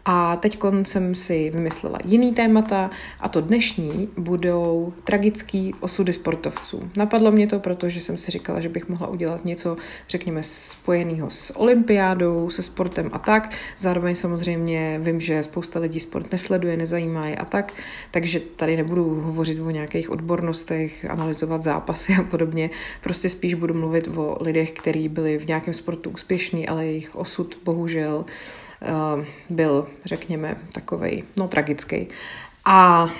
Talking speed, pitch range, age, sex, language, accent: 145 wpm, 160-185 Hz, 40-59, female, Czech, native